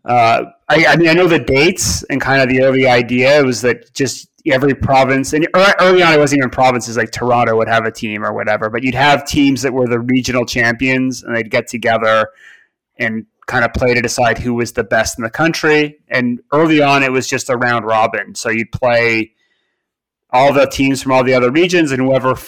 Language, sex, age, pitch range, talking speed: English, male, 30-49, 120-150 Hz, 220 wpm